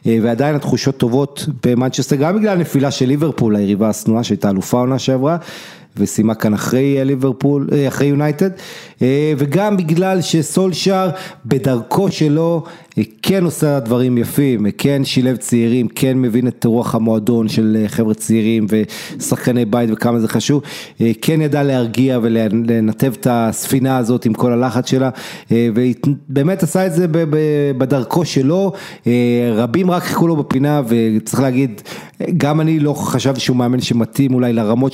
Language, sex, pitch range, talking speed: Hebrew, male, 120-150 Hz, 135 wpm